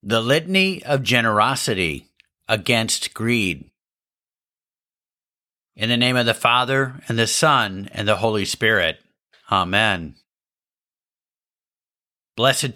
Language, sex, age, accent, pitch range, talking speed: English, male, 50-69, American, 100-140 Hz, 100 wpm